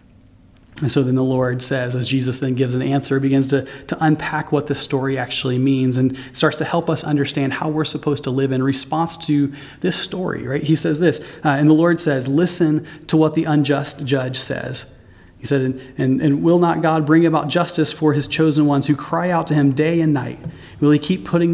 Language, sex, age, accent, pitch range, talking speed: English, male, 30-49, American, 135-155 Hz, 225 wpm